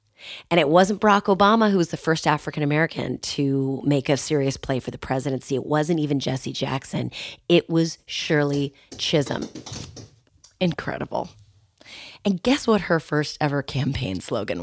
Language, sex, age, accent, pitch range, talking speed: English, female, 30-49, American, 130-165 Hz, 150 wpm